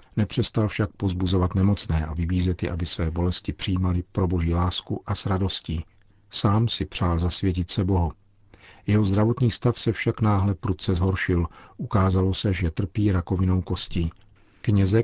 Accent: native